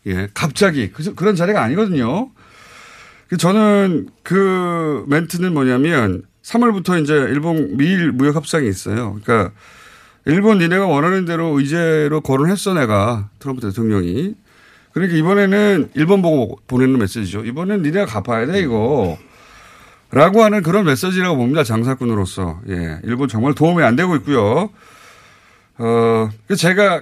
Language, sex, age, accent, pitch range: Korean, male, 40-59, native, 105-165 Hz